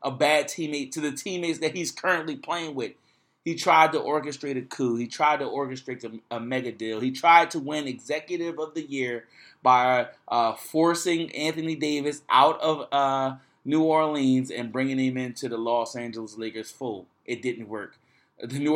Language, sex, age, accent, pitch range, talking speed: English, male, 30-49, American, 125-155 Hz, 180 wpm